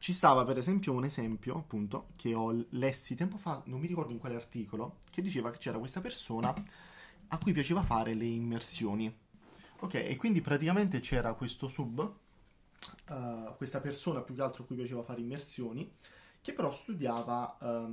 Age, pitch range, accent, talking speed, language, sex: 20-39, 115-165 Hz, native, 165 wpm, Italian, male